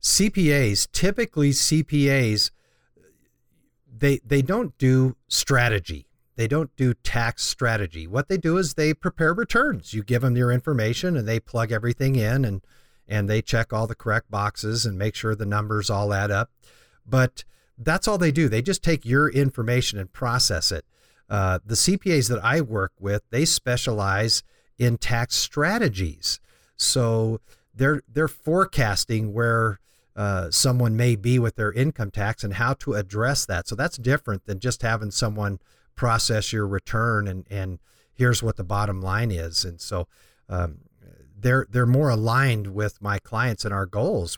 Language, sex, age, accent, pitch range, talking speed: English, male, 50-69, American, 100-130 Hz, 160 wpm